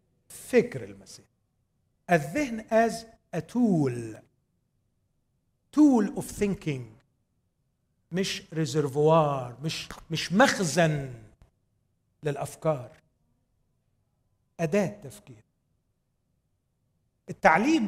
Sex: male